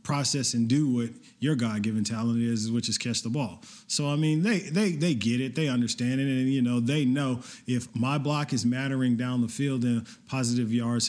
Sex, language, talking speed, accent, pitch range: male, English, 215 wpm, American, 110-120 Hz